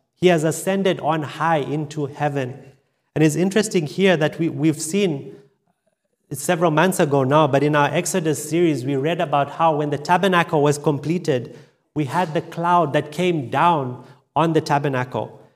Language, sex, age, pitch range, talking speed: English, male, 30-49, 135-165 Hz, 160 wpm